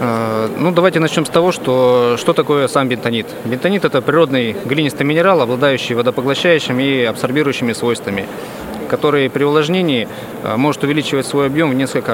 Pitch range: 125-155 Hz